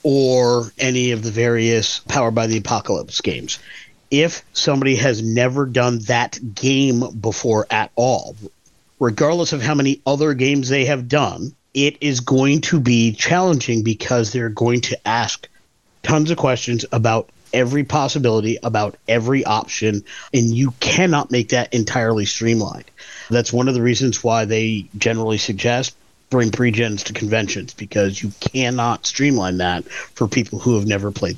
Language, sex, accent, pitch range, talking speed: English, male, American, 115-135 Hz, 155 wpm